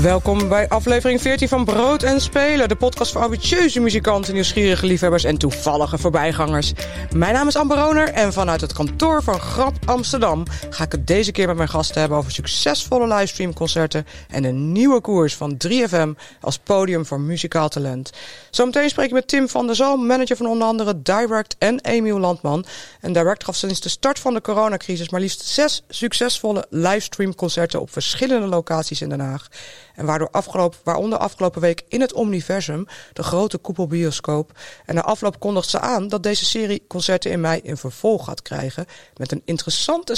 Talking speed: 175 wpm